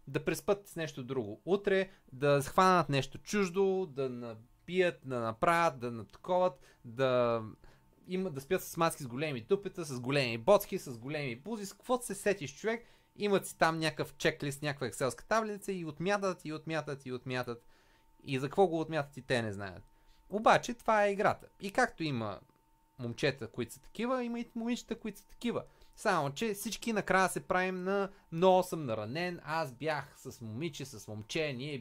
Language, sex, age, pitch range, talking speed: Bulgarian, male, 30-49, 130-190 Hz, 175 wpm